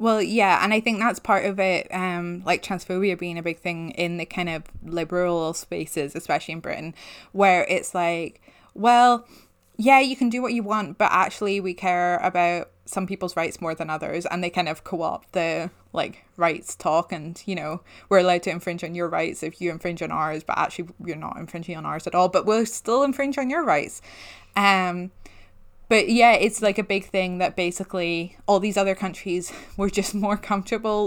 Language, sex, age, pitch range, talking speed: English, female, 20-39, 170-205 Hz, 205 wpm